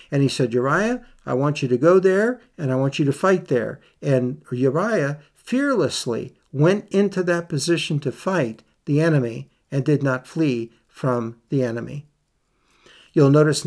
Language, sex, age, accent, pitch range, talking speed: English, male, 60-79, American, 130-170 Hz, 165 wpm